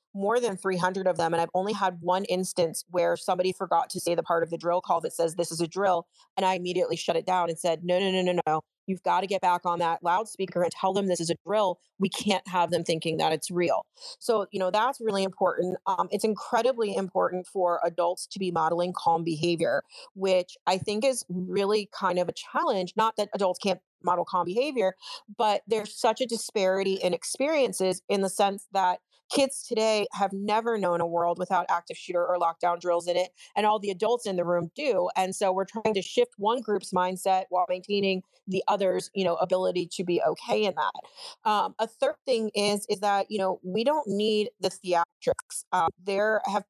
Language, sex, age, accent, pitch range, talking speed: English, female, 30-49, American, 180-210 Hz, 215 wpm